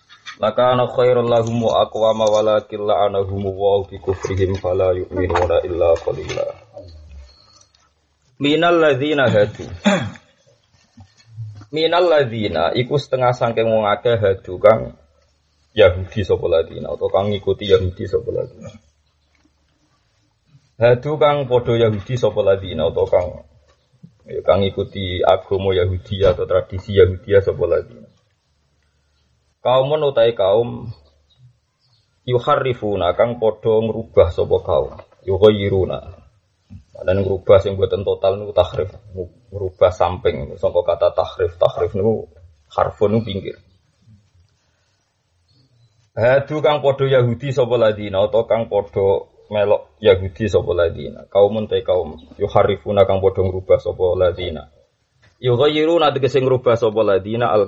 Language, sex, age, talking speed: Indonesian, male, 30-49, 115 wpm